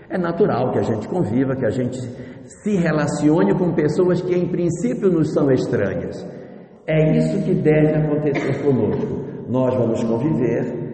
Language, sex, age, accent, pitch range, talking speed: Portuguese, male, 60-79, Brazilian, 130-165 Hz, 155 wpm